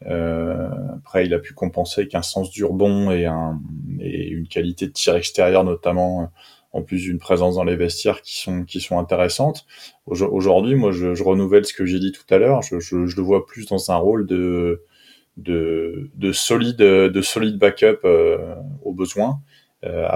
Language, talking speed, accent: French, 195 wpm, French